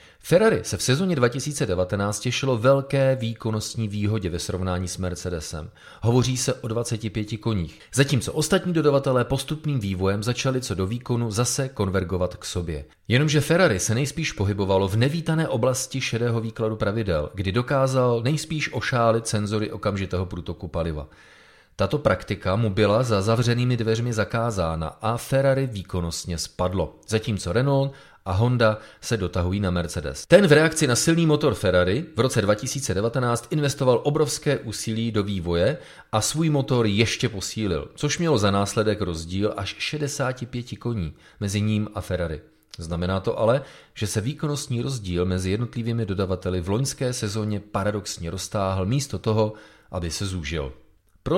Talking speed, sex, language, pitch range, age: 145 wpm, male, Czech, 95-130 Hz, 30-49